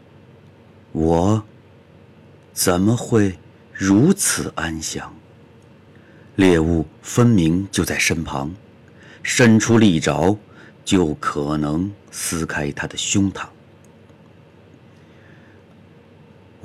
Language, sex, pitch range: Chinese, male, 80-115 Hz